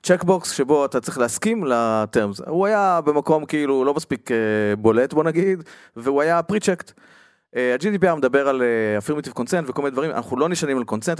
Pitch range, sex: 120-170 Hz, male